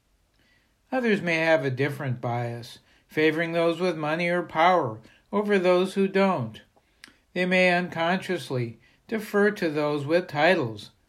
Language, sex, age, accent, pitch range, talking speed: English, male, 60-79, American, 135-180 Hz, 130 wpm